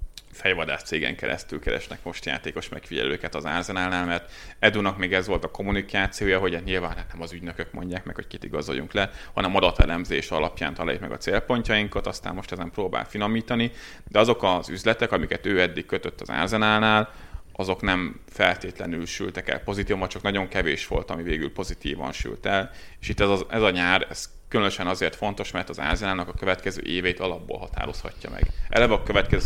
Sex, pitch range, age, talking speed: male, 90-105 Hz, 30-49, 185 wpm